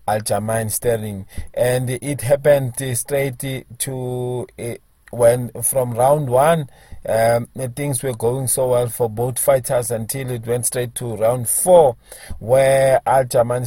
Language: English